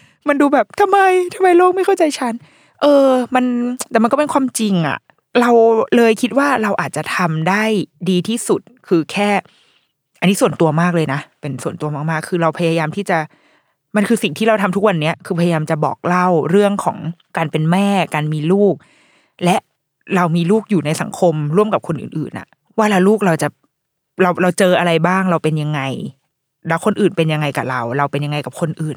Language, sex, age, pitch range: Thai, female, 20-39, 165-245 Hz